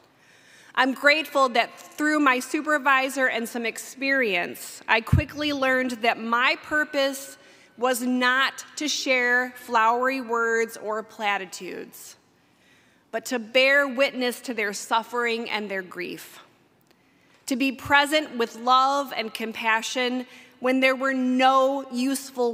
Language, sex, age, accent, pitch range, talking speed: English, female, 20-39, American, 220-270 Hz, 120 wpm